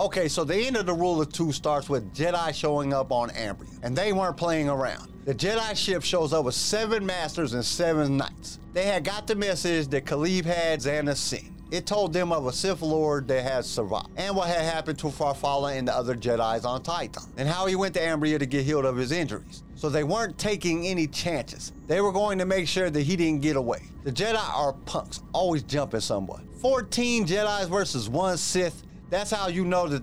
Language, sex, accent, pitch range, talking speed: English, male, American, 140-185 Hz, 220 wpm